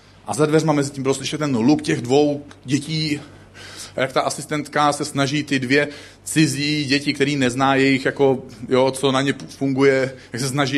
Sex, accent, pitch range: male, native, 105-145 Hz